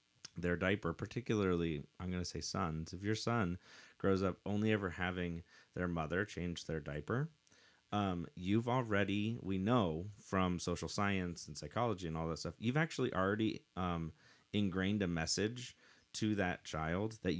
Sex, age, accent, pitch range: male, 30-49, American, 80-100 Hz